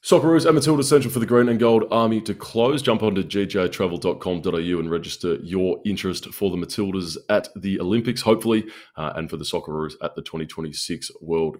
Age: 20-39